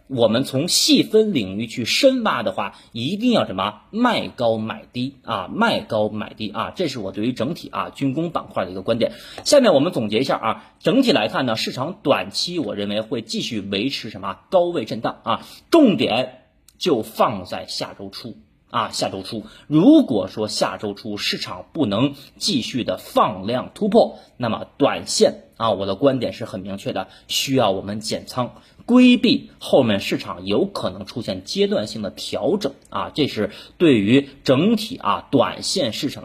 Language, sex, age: Chinese, male, 30-49